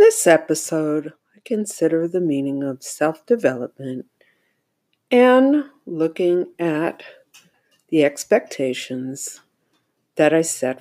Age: 60-79